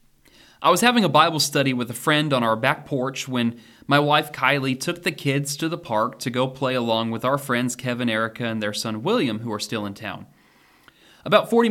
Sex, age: male, 30-49